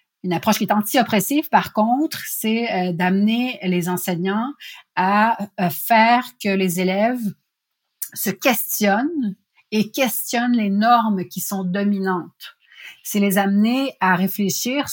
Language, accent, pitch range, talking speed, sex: French, Canadian, 175-215 Hz, 120 wpm, female